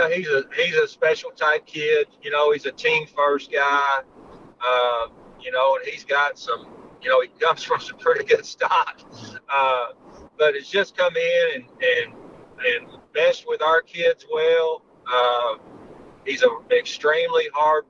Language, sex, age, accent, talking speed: English, male, 40-59, American, 165 wpm